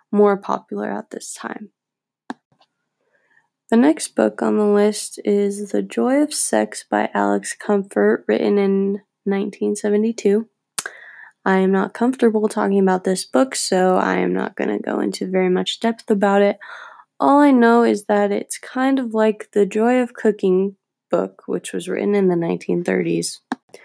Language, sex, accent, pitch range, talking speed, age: English, female, American, 190-230 Hz, 160 wpm, 20-39